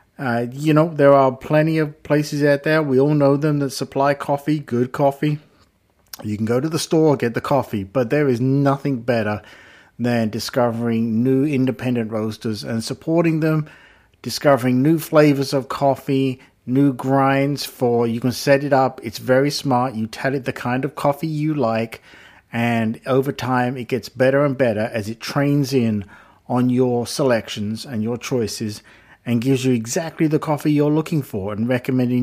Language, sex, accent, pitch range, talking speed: English, male, British, 120-145 Hz, 175 wpm